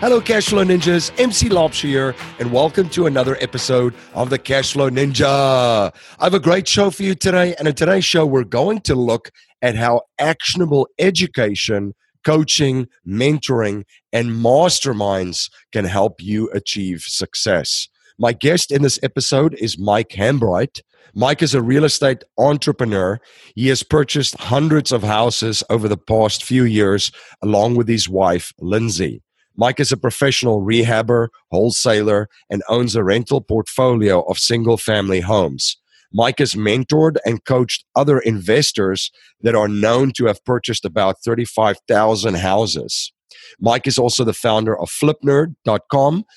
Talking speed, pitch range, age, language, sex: 145 wpm, 105-140 Hz, 40-59, English, male